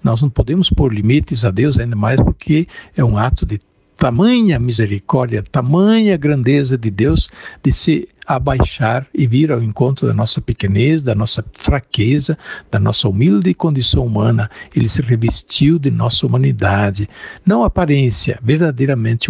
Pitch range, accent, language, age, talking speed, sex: 110-155 Hz, Brazilian, Portuguese, 60-79, 150 wpm, male